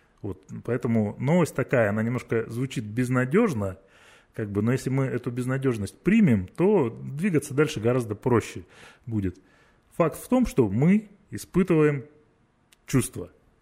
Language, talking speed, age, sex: Russian, 130 wpm, 20-39, male